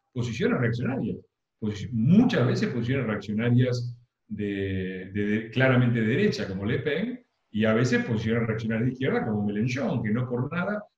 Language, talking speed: Spanish, 160 wpm